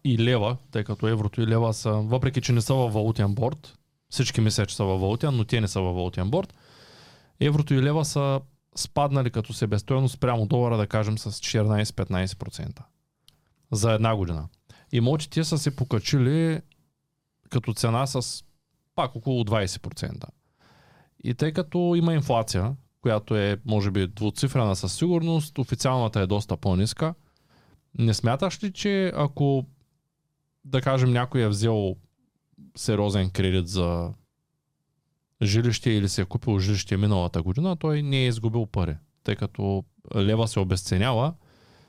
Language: Bulgarian